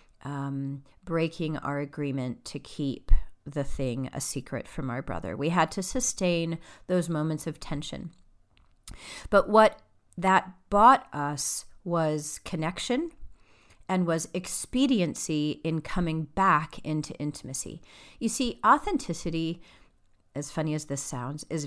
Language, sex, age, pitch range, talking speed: English, female, 40-59, 140-175 Hz, 125 wpm